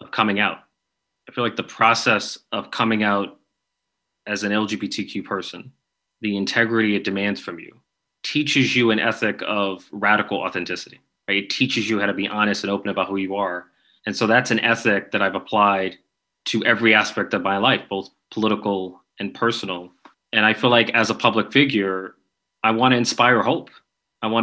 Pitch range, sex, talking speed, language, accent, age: 100-115 Hz, male, 185 wpm, English, American, 30-49